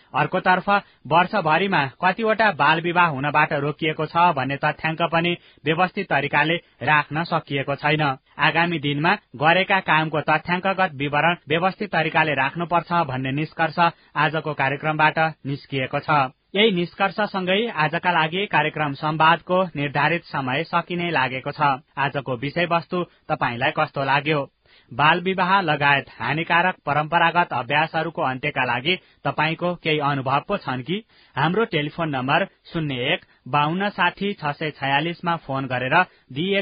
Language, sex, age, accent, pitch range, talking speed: English, male, 30-49, Indian, 140-170 Hz, 110 wpm